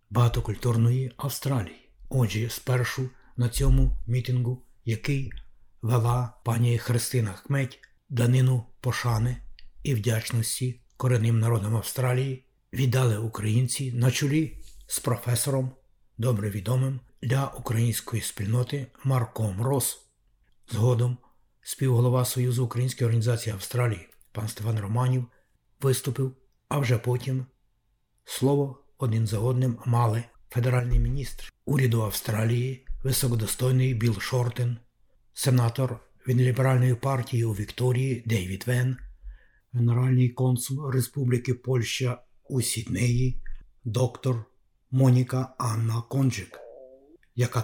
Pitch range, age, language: 115-130 Hz, 60-79, Ukrainian